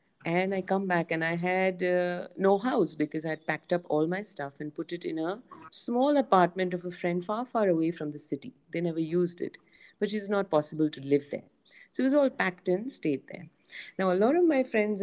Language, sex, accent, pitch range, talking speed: English, female, Indian, 150-195 Hz, 235 wpm